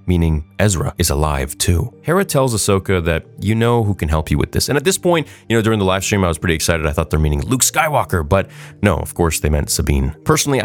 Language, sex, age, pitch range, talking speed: English, male, 30-49, 85-105 Hz, 255 wpm